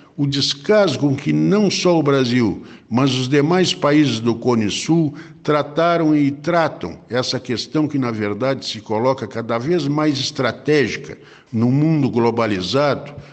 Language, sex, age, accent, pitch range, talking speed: Portuguese, male, 60-79, Brazilian, 115-150 Hz, 145 wpm